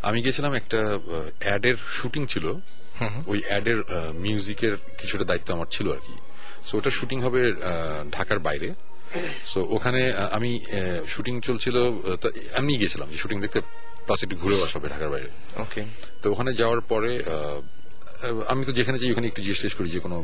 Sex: male